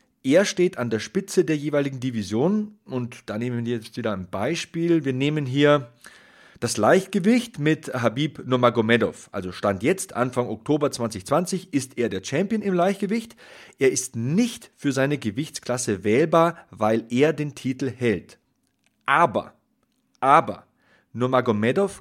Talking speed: 140 wpm